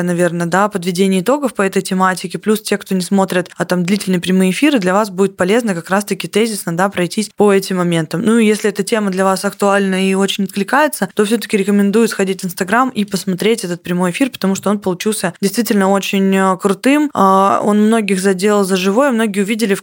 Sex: female